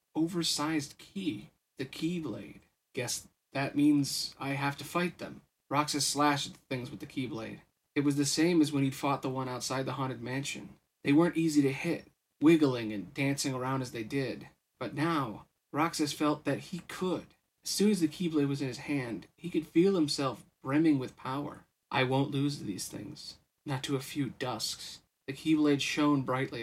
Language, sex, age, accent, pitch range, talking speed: English, male, 30-49, American, 135-155 Hz, 185 wpm